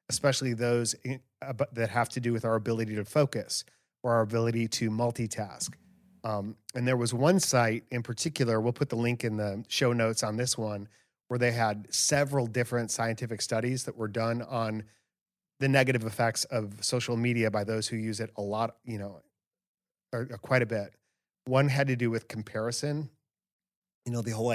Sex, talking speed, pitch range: male, 190 wpm, 110-125 Hz